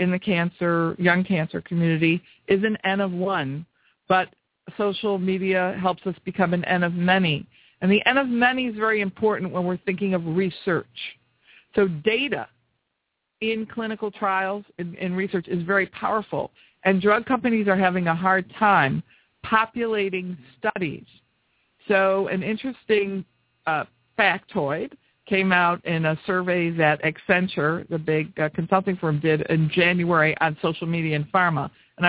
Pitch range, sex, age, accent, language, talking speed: 175-205 Hz, female, 50-69, American, English, 150 wpm